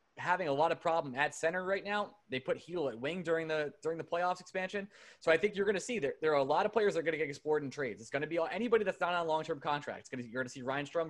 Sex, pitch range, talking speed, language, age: male, 125-170 Hz, 320 wpm, English, 20-39